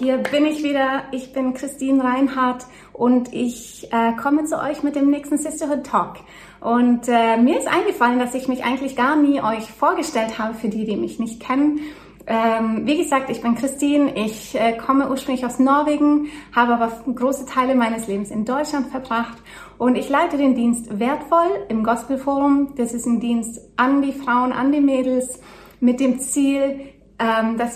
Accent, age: German, 30-49